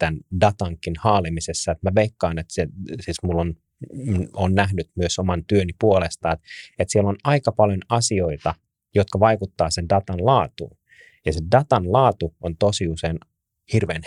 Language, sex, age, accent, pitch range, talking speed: Finnish, male, 30-49, native, 85-110 Hz, 155 wpm